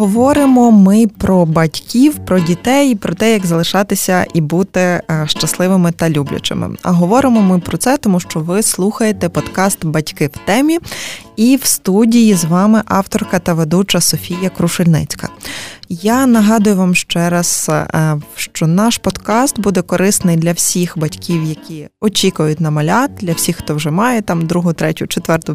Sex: female